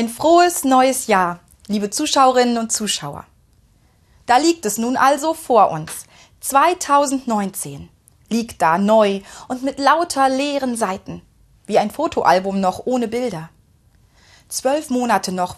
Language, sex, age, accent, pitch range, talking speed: German, female, 30-49, German, 200-265 Hz, 125 wpm